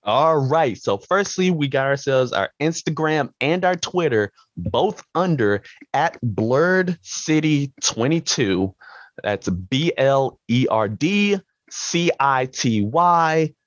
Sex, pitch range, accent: male, 110-160 Hz, American